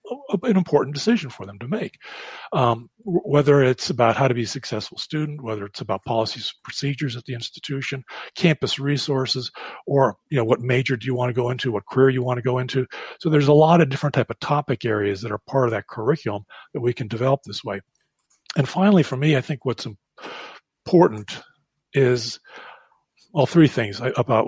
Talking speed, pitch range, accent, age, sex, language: 200 wpm, 115-145 Hz, American, 40-59, male, English